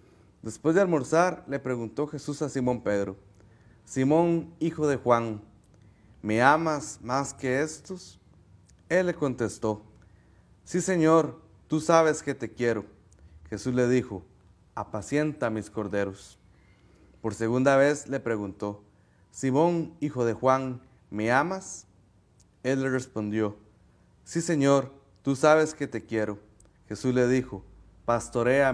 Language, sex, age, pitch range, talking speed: Spanish, male, 30-49, 105-140 Hz, 125 wpm